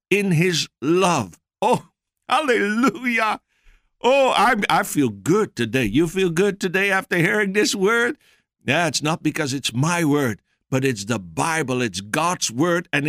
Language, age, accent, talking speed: English, 60-79, American, 155 wpm